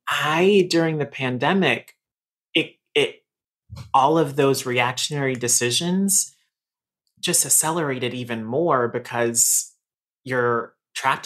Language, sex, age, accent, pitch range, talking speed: English, male, 30-49, American, 115-140 Hz, 95 wpm